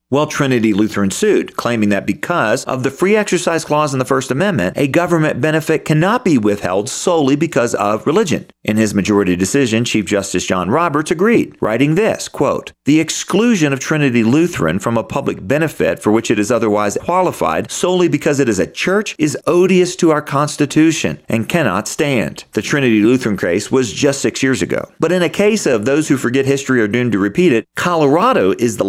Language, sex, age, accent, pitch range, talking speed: English, male, 40-59, American, 105-155 Hz, 195 wpm